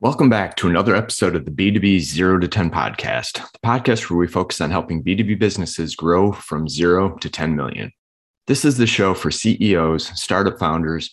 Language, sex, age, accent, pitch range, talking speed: English, male, 30-49, American, 80-100 Hz, 190 wpm